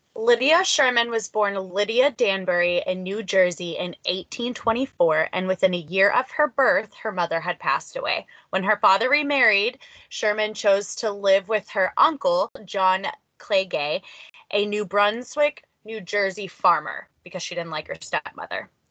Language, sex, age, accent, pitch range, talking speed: English, female, 20-39, American, 190-280 Hz, 155 wpm